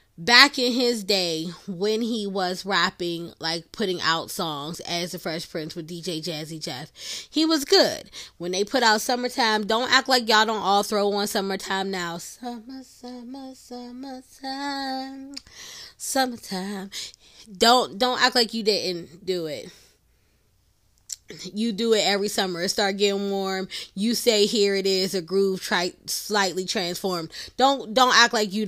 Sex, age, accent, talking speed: female, 20-39, American, 155 wpm